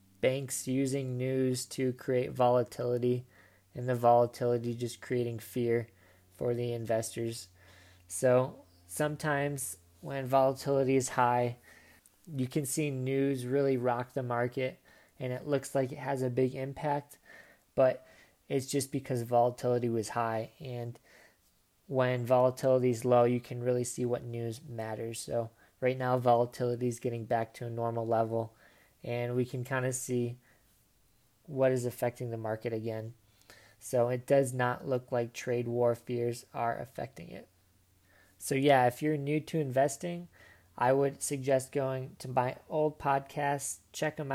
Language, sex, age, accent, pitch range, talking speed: English, male, 20-39, American, 115-135 Hz, 145 wpm